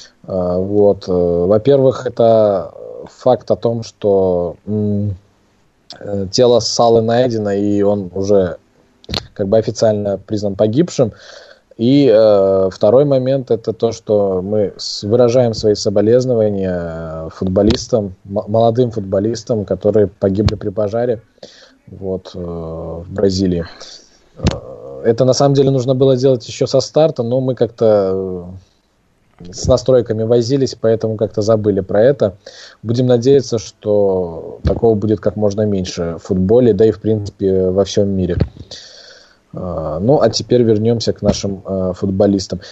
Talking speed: 120 wpm